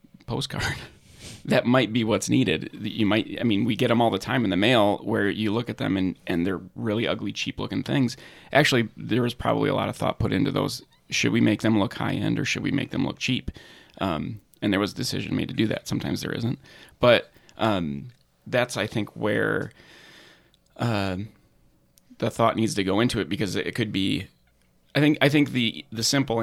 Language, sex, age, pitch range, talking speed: English, male, 30-49, 95-115 Hz, 215 wpm